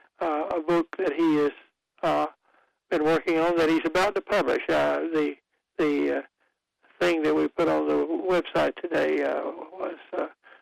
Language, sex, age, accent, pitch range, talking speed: English, male, 60-79, American, 145-170 Hz, 170 wpm